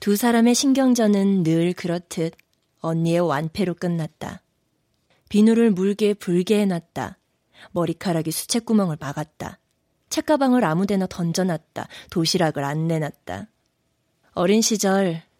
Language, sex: Korean, female